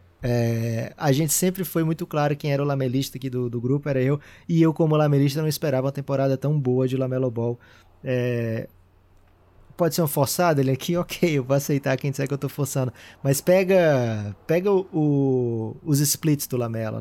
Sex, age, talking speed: male, 20-39, 200 wpm